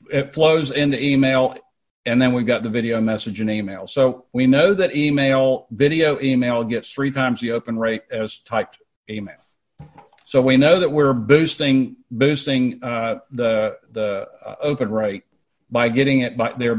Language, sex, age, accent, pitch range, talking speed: English, male, 50-69, American, 120-145 Hz, 165 wpm